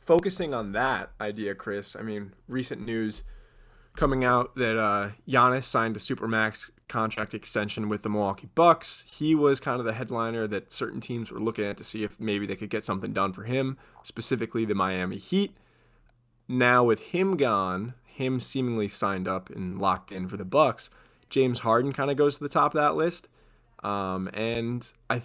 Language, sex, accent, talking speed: English, male, American, 185 wpm